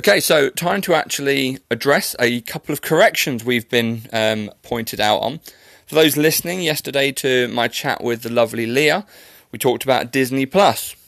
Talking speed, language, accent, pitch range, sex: 170 wpm, English, British, 125-165 Hz, male